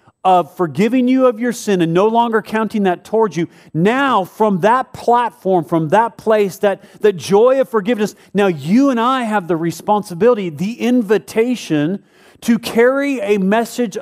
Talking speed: 160 wpm